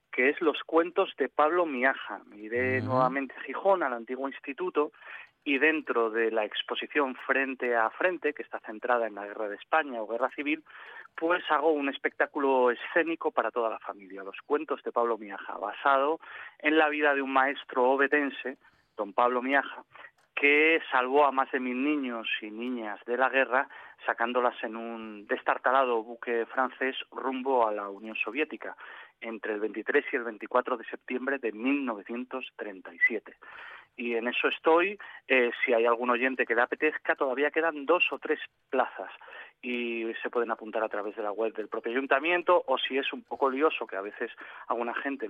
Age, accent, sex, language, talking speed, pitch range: 30-49, Spanish, male, Spanish, 175 wpm, 120-150 Hz